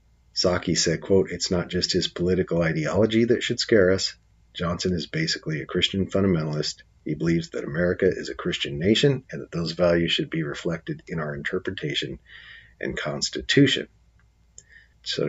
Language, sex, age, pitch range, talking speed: English, male, 40-59, 85-115 Hz, 155 wpm